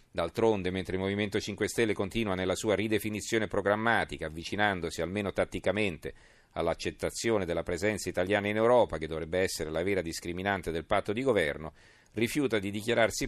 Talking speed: 150 wpm